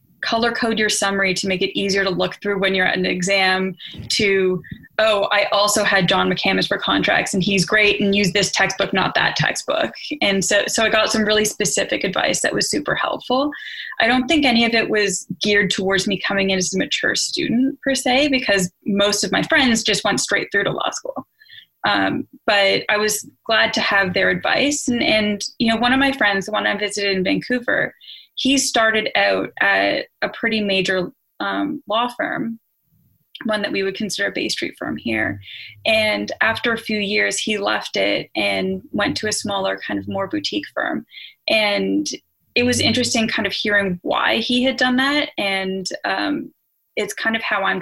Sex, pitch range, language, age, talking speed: female, 195-245 Hz, English, 20-39, 200 wpm